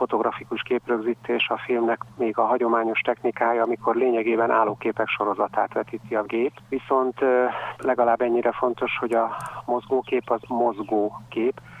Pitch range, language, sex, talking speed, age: 115-125 Hz, Hungarian, male, 120 wpm, 50-69